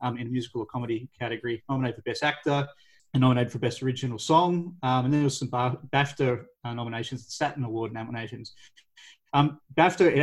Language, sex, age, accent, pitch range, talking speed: English, male, 30-49, Australian, 125-150 Hz, 190 wpm